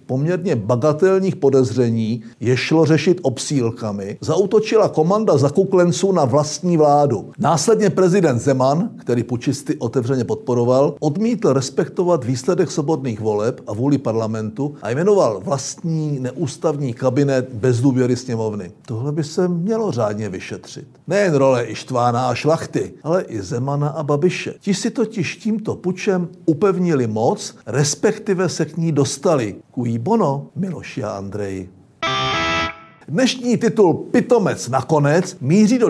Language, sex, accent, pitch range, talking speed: Czech, male, native, 130-175 Hz, 125 wpm